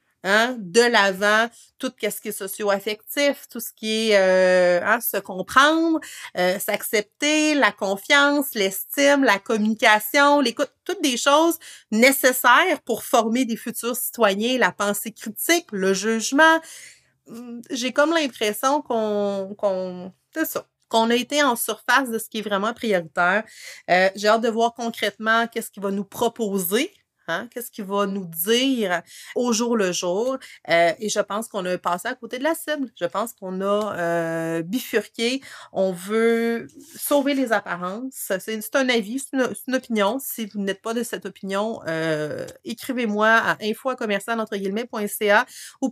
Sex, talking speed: female, 160 wpm